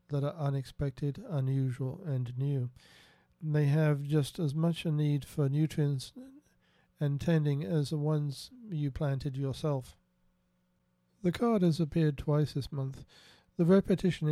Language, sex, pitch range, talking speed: English, male, 135-160 Hz, 135 wpm